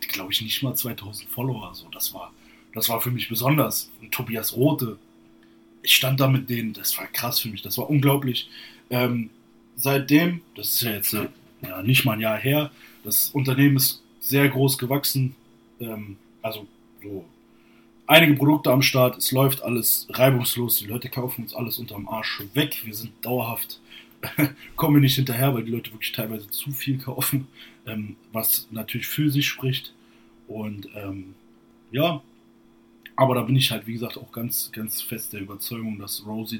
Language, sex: German, male